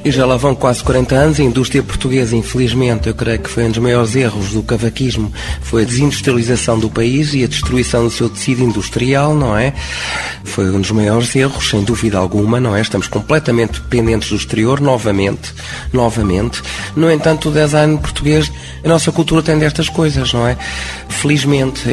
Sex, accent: male, Portuguese